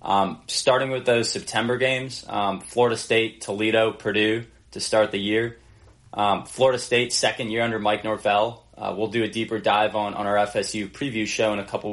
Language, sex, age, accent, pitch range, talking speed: English, male, 20-39, American, 100-115 Hz, 190 wpm